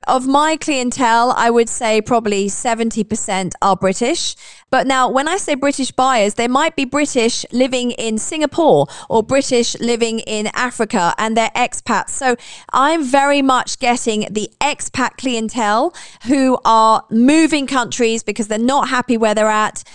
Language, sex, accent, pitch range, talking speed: English, female, British, 220-275 Hz, 155 wpm